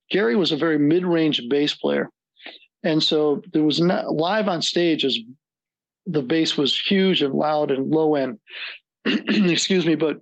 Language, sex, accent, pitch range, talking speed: English, male, American, 145-170 Hz, 165 wpm